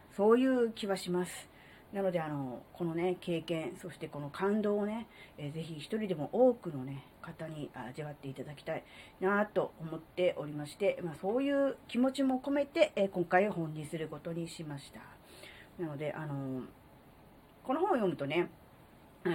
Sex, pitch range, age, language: female, 150-235 Hz, 40-59, Japanese